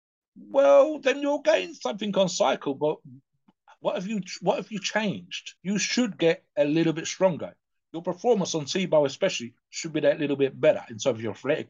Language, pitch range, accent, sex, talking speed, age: English, 120-170 Hz, British, male, 195 wpm, 50-69